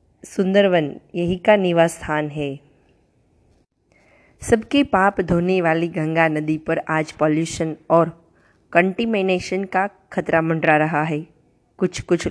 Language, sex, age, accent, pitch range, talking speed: Gujarati, female, 20-39, native, 155-185 Hz, 115 wpm